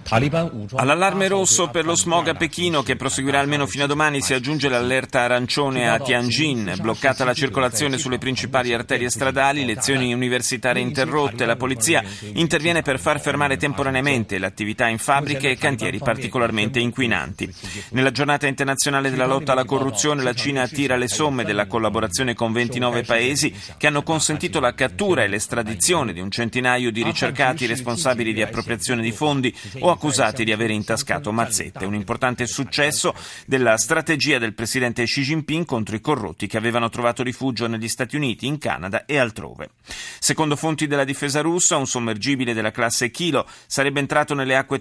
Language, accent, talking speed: Italian, native, 160 wpm